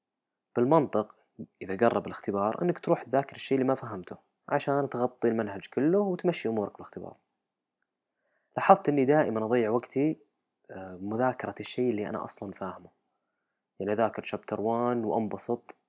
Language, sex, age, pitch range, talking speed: Arabic, female, 20-39, 105-130 Hz, 130 wpm